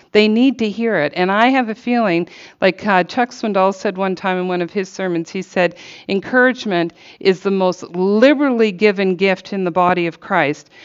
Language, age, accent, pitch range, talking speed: English, 50-69, American, 160-200 Hz, 200 wpm